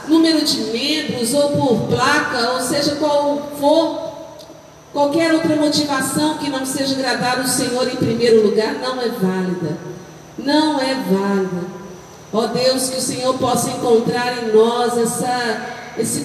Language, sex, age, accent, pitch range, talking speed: Portuguese, female, 50-69, Brazilian, 230-285 Hz, 145 wpm